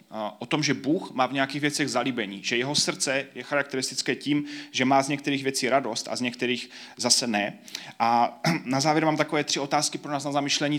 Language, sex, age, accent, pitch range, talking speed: Czech, male, 30-49, native, 115-145 Hz, 205 wpm